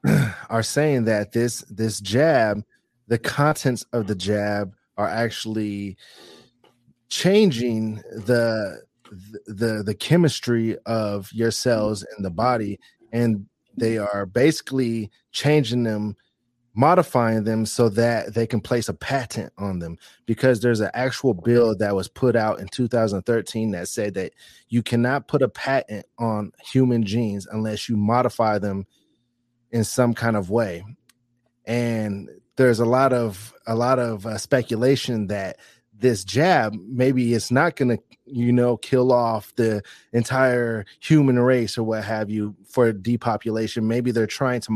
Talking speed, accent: 145 wpm, American